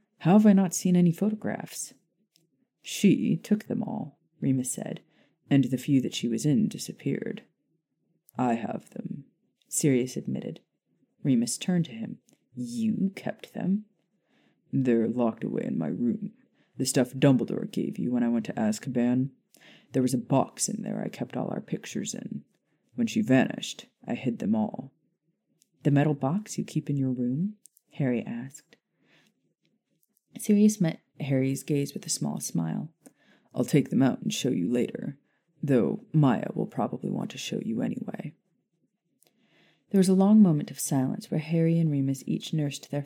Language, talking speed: English, 165 wpm